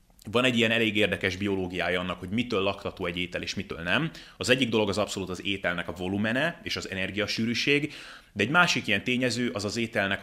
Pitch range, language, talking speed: 95-115 Hz, Hungarian, 205 wpm